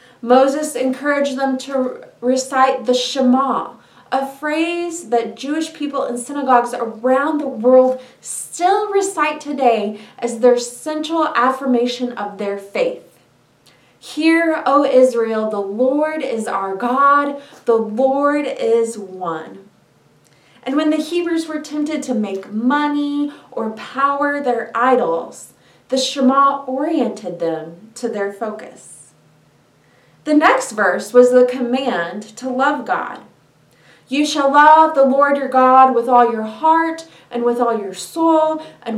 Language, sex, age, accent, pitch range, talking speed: English, female, 30-49, American, 240-300 Hz, 130 wpm